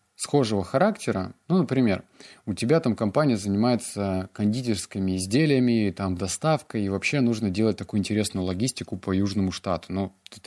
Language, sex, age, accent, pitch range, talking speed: Russian, male, 20-39, native, 95-125 Hz, 145 wpm